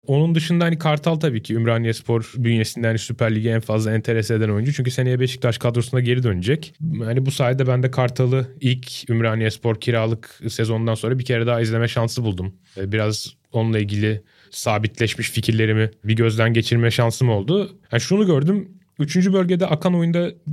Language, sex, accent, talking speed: Turkish, male, native, 165 wpm